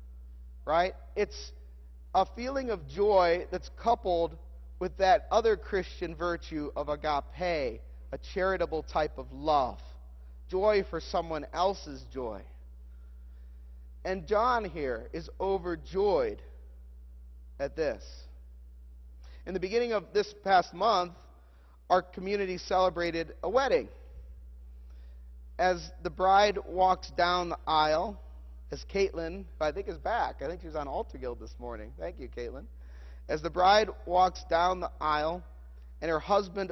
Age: 40-59